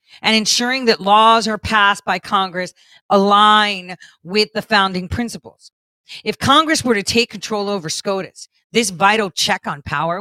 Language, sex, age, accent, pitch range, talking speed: English, female, 40-59, American, 160-225 Hz, 155 wpm